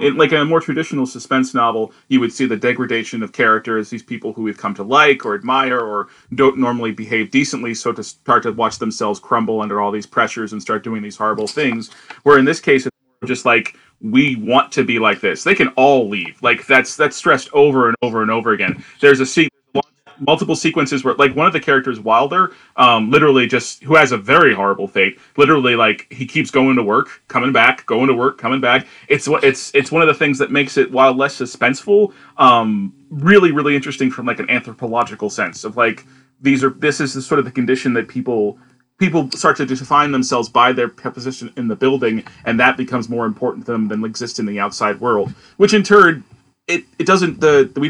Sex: male